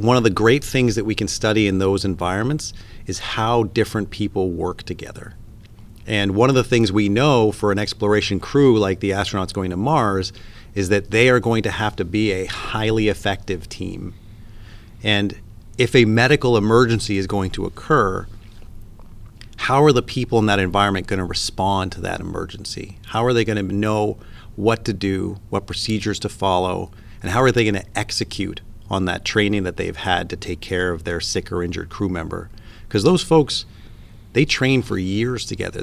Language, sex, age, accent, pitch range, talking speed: English, male, 40-59, American, 95-110 Hz, 190 wpm